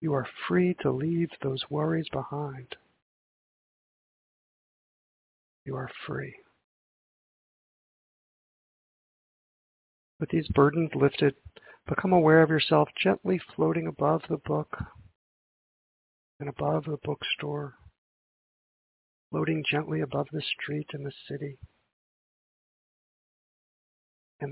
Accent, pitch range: American, 90-150 Hz